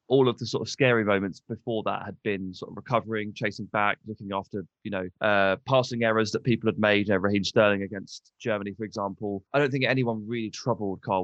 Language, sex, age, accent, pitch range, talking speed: English, male, 20-39, British, 100-125 Hz, 225 wpm